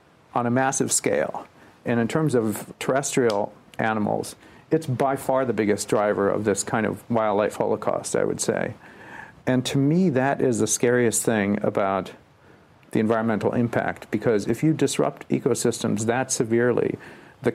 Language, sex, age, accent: English, male, 50-69, American